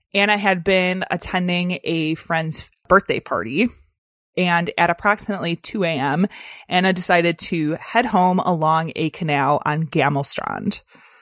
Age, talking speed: 20-39, 125 wpm